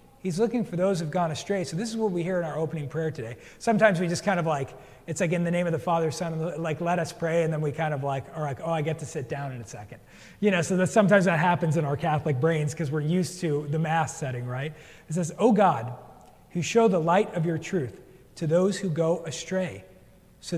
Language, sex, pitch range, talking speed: English, male, 155-190 Hz, 260 wpm